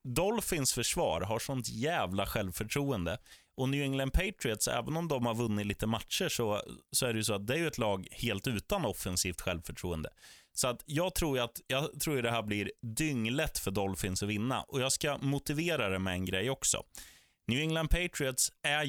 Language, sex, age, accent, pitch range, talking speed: Swedish, male, 20-39, native, 95-130 Hz, 190 wpm